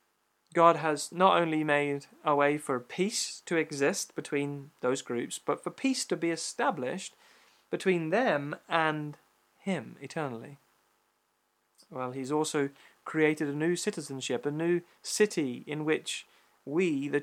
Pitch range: 135-160 Hz